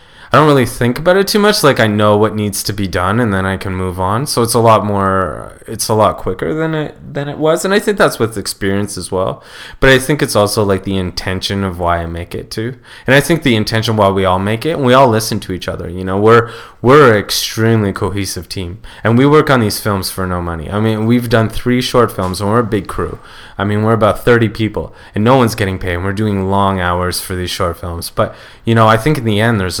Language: English